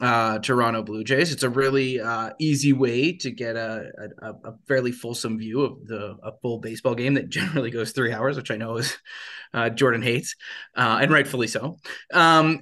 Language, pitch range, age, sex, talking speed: English, 125-165 Hz, 20-39, male, 195 wpm